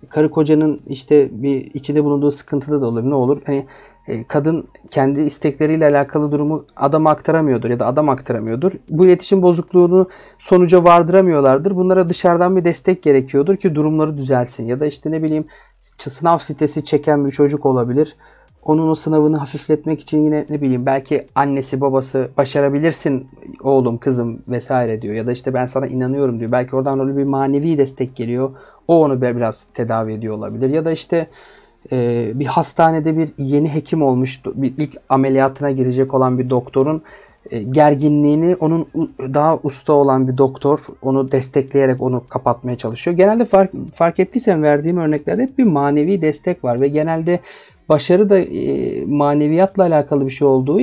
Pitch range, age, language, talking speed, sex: 130-155 Hz, 40-59, Turkish, 150 wpm, male